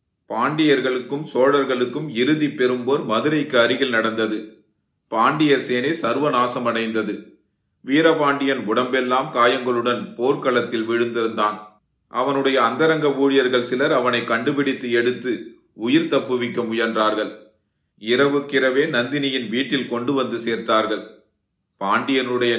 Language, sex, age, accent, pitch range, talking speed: Tamil, male, 30-49, native, 115-135 Hz, 80 wpm